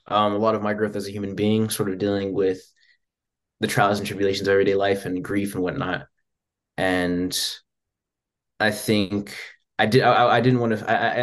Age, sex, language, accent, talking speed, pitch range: 20-39, male, English, American, 185 wpm, 95-110 Hz